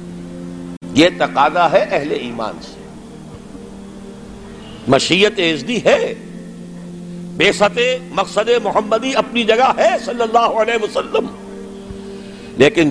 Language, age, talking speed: Urdu, 60-79, 90 wpm